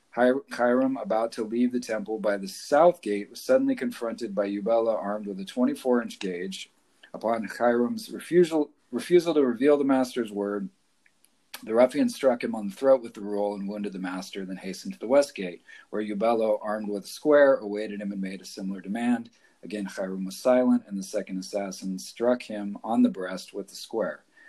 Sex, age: male, 40-59